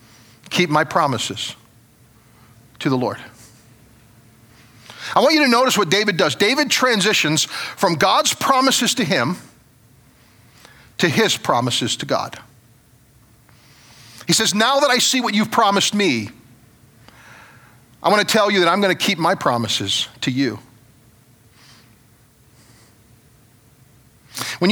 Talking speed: 125 wpm